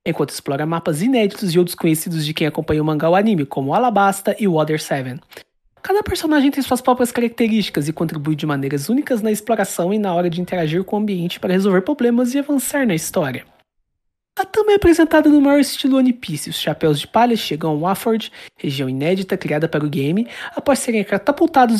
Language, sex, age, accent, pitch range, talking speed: Portuguese, male, 30-49, Brazilian, 160-235 Hz, 200 wpm